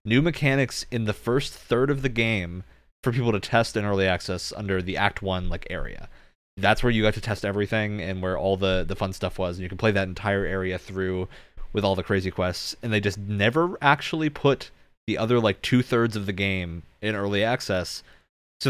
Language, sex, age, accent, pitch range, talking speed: English, male, 20-39, American, 95-115 Hz, 215 wpm